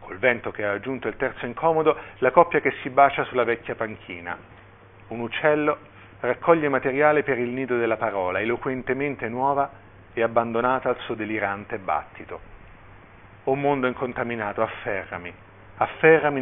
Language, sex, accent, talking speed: Italian, male, native, 140 wpm